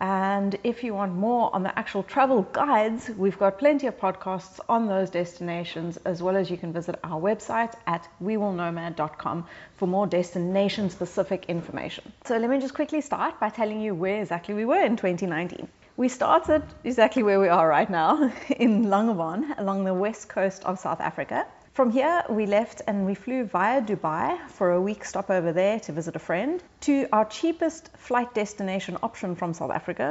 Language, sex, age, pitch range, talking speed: English, female, 30-49, 180-245 Hz, 185 wpm